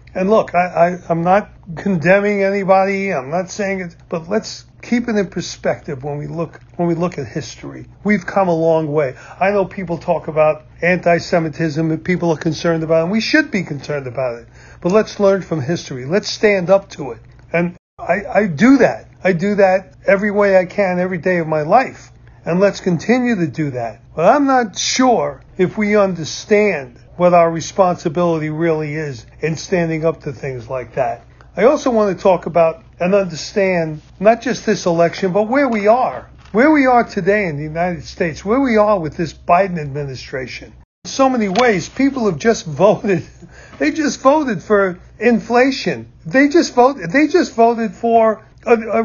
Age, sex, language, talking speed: 40-59, male, English, 185 wpm